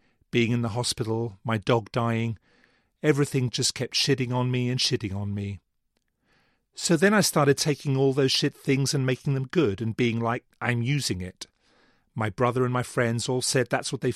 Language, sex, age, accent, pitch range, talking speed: English, male, 40-59, British, 110-135 Hz, 195 wpm